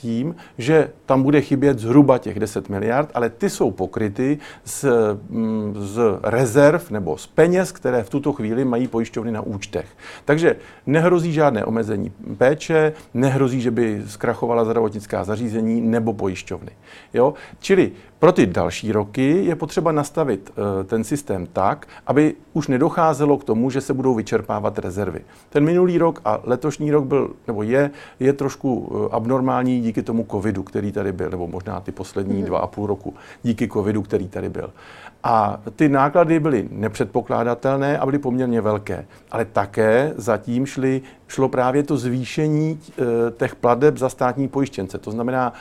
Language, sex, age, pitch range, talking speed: Czech, male, 50-69, 110-140 Hz, 155 wpm